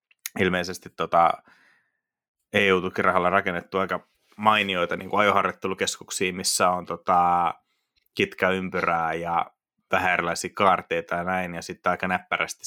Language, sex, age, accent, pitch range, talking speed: Finnish, male, 30-49, native, 85-100 Hz, 110 wpm